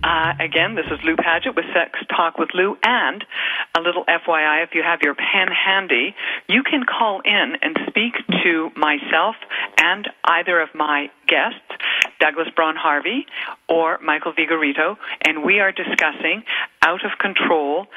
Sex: female